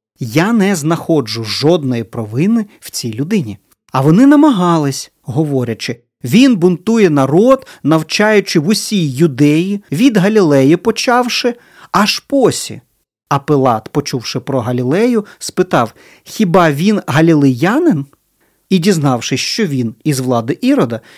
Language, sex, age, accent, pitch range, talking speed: Ukrainian, male, 40-59, native, 130-195 Hz, 115 wpm